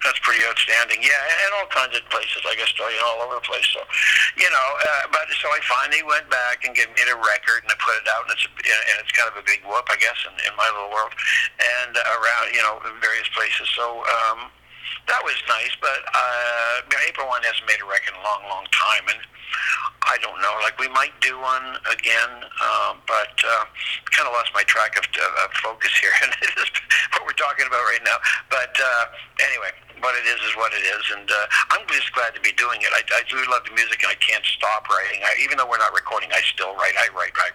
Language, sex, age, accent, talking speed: English, male, 60-79, American, 245 wpm